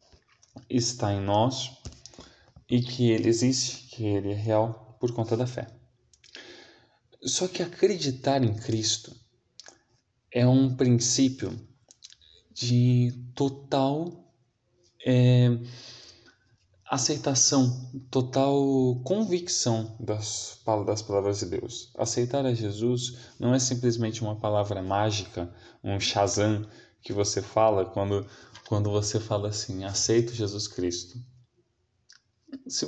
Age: 20-39